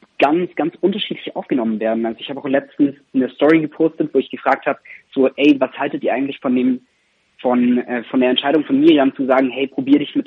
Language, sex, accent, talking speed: German, male, German, 220 wpm